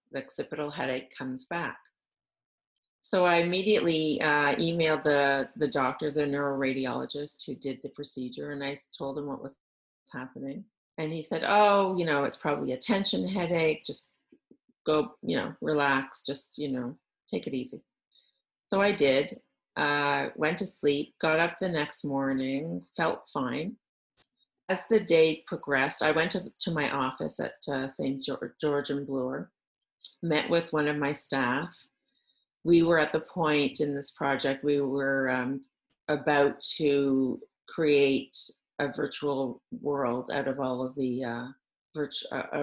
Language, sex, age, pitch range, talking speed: English, female, 40-59, 135-160 Hz, 155 wpm